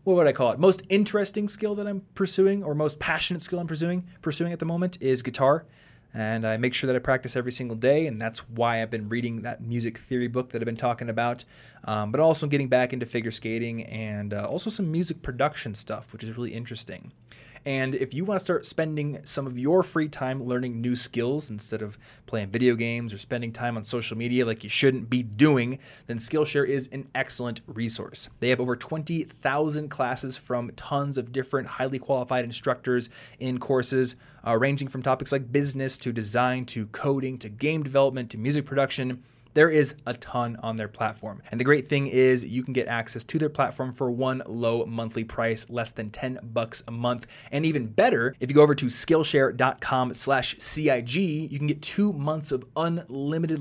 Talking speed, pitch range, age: 200 wpm, 115-145 Hz, 20-39